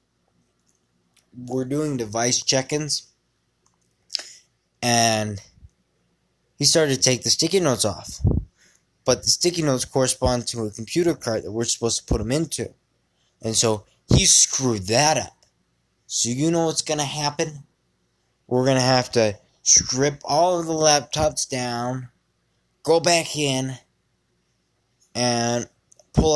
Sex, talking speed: male, 130 wpm